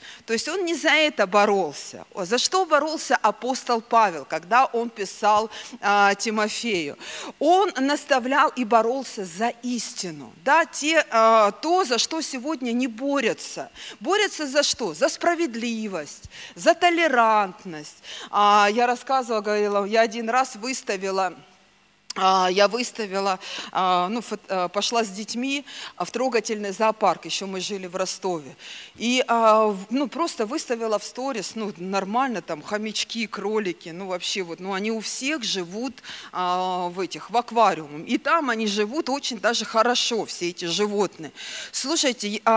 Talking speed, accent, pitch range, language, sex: 135 wpm, native, 205-260 Hz, Russian, female